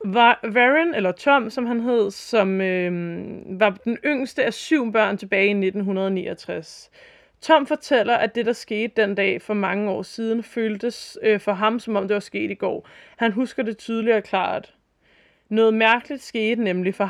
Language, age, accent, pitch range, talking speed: Danish, 20-39, native, 195-240 Hz, 185 wpm